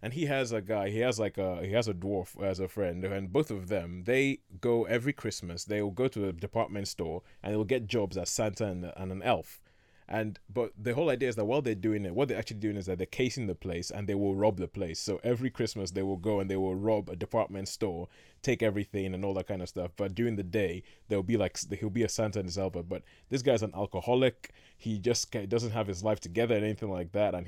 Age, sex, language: 20-39, male, English